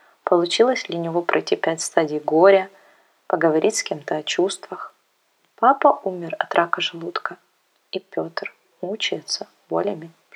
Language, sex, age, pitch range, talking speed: Russian, female, 20-39, 170-210 Hz, 125 wpm